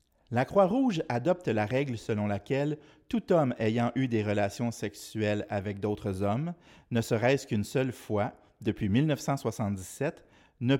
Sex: male